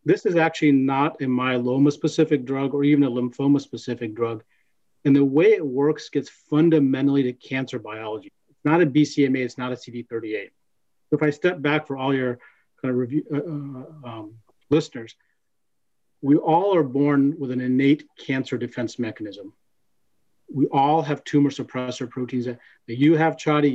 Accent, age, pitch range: American, 40-59, 125-155 Hz